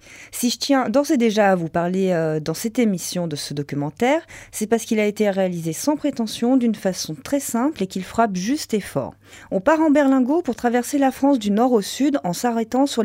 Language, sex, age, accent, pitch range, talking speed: French, female, 30-49, French, 180-255 Hz, 220 wpm